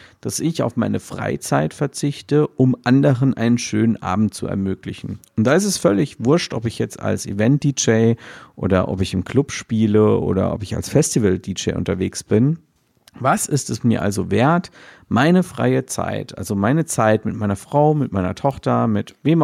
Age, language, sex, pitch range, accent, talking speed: 50-69, German, male, 105-130 Hz, German, 175 wpm